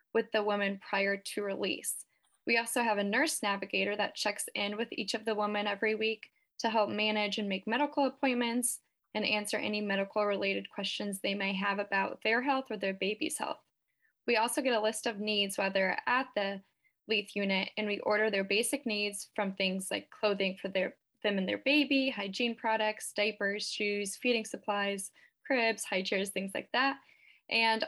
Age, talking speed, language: 10-29, 185 wpm, English